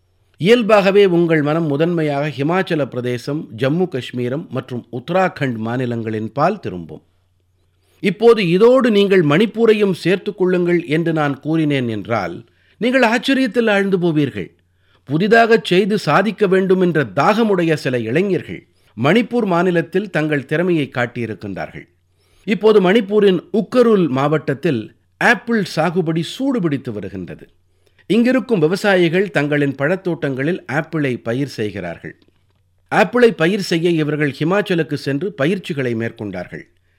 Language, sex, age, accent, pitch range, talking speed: Tamil, male, 50-69, native, 115-190 Hz, 100 wpm